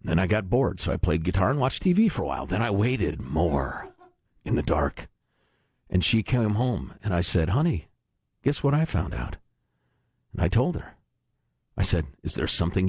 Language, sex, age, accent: English, male, 50-69, American